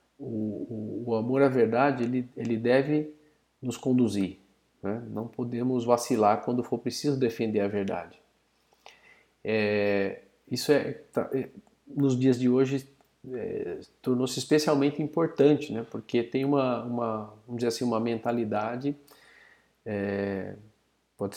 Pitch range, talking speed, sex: 110-135 Hz, 125 wpm, male